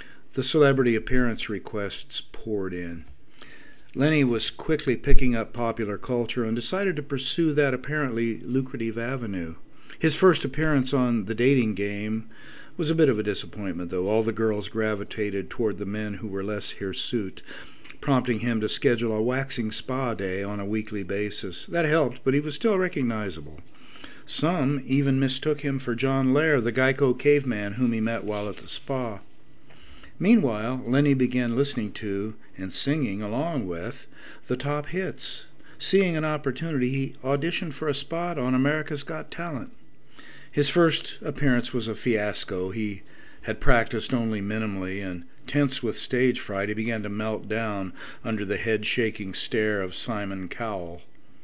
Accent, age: American, 50-69